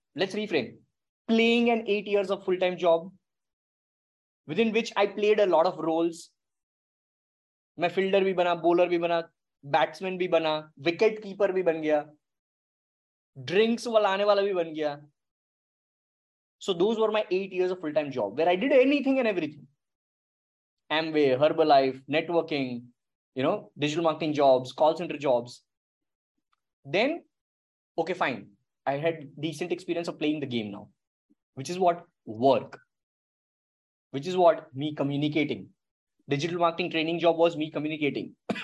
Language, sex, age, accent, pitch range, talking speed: English, male, 20-39, Indian, 145-185 Hz, 140 wpm